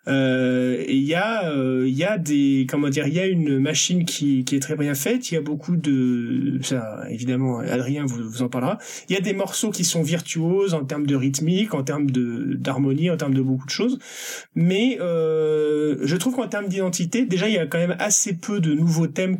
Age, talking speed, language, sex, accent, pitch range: 30-49, 230 wpm, French, male, French, 140-185 Hz